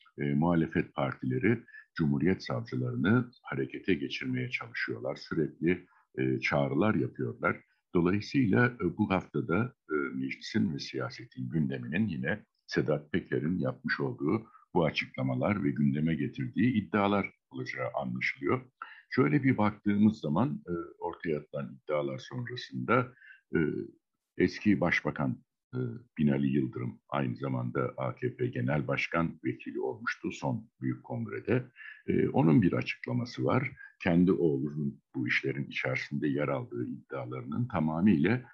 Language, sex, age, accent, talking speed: Turkish, male, 60-79, native, 110 wpm